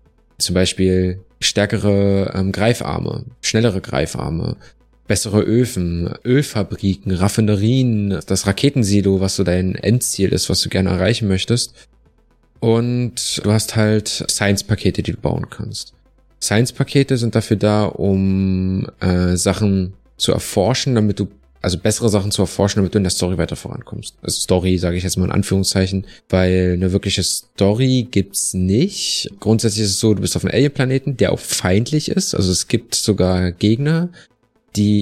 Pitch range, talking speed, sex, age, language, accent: 95-120 Hz, 150 wpm, male, 20-39, German, German